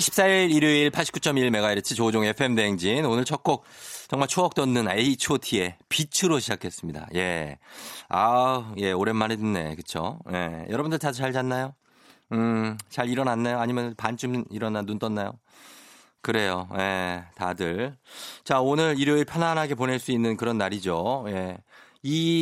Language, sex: Korean, male